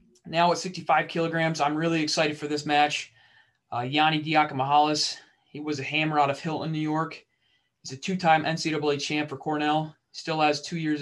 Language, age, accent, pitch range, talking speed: English, 20-39, American, 140-160 Hz, 180 wpm